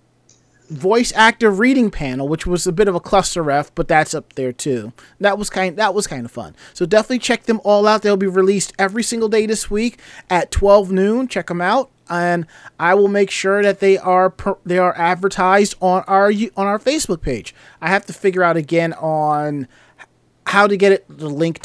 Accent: American